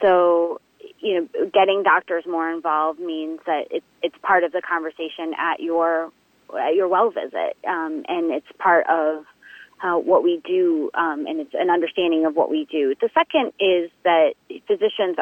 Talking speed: 175 wpm